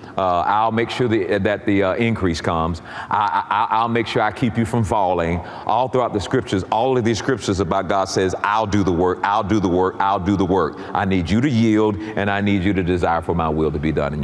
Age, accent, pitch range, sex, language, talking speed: 50-69, American, 95-135 Hz, male, English, 255 wpm